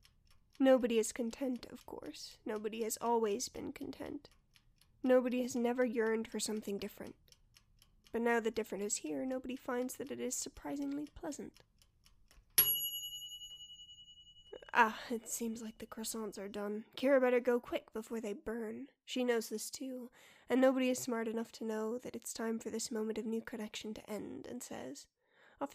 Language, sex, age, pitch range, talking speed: English, female, 10-29, 225-265 Hz, 165 wpm